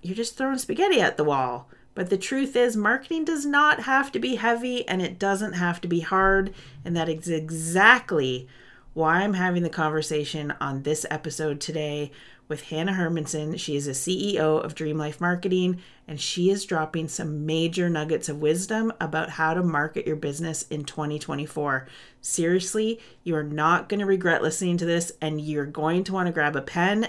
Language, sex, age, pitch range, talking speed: English, female, 30-49, 150-190 Hz, 190 wpm